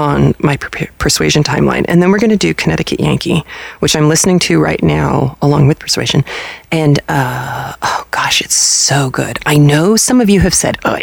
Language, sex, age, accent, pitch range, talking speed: English, female, 30-49, American, 145-210 Hz, 195 wpm